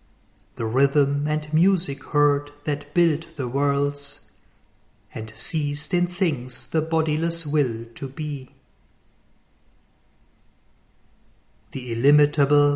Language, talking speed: German, 95 wpm